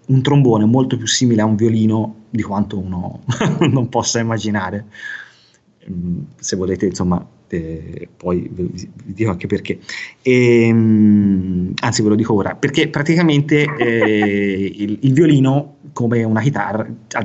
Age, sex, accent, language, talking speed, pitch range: 30-49, male, native, Italian, 135 wpm, 105-130 Hz